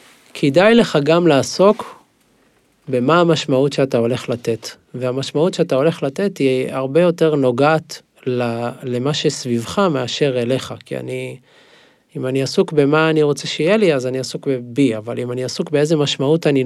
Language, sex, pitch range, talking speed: Hebrew, male, 130-160 Hz, 150 wpm